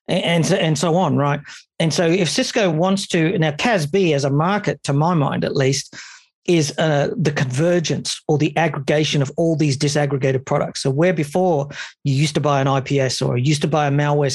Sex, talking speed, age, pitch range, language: male, 205 wpm, 40-59, 145-175 Hz, English